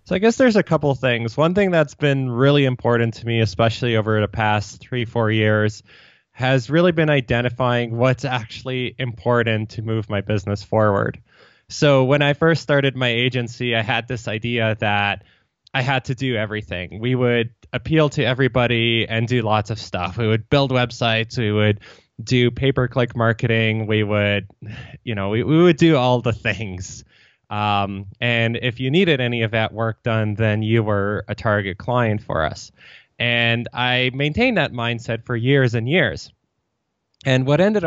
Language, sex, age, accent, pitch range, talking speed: English, male, 20-39, American, 110-130 Hz, 175 wpm